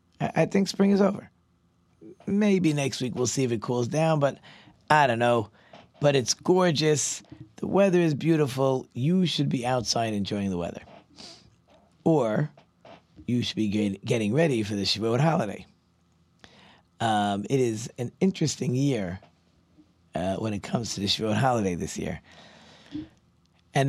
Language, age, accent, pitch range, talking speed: English, 40-59, American, 100-160 Hz, 150 wpm